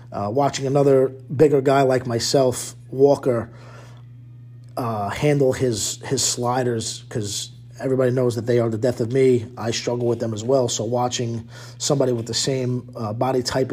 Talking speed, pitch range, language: 165 wpm, 120-140 Hz, English